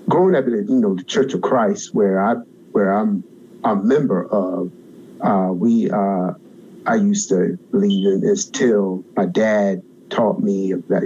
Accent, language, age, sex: American, English, 50-69, male